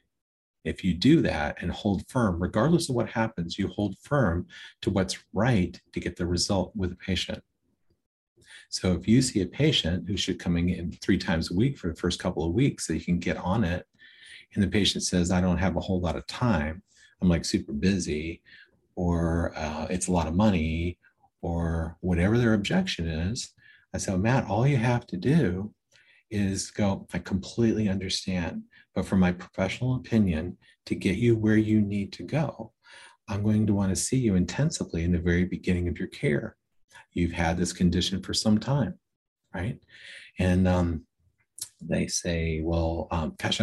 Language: English